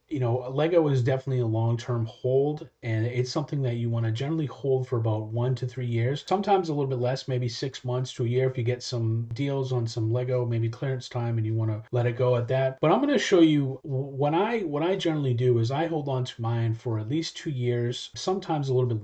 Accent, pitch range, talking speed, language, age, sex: American, 115-140 Hz, 260 wpm, English, 30-49, male